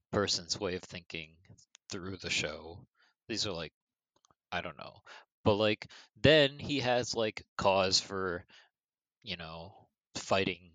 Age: 30-49